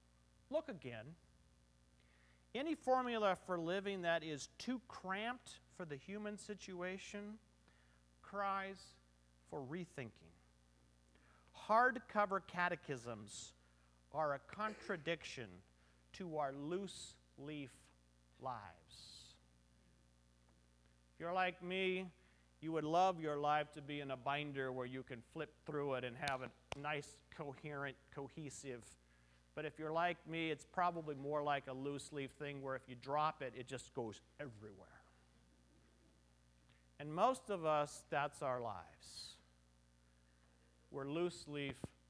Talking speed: 115 wpm